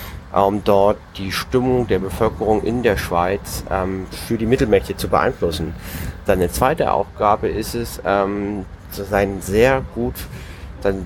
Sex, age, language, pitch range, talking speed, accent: male, 30-49, German, 90-110 Hz, 135 wpm, German